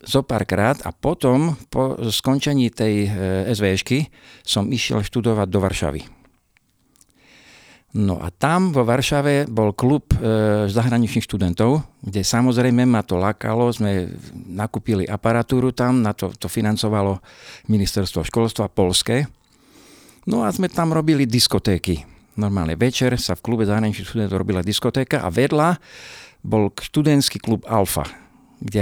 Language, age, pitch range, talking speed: Slovak, 50-69, 100-125 Hz, 130 wpm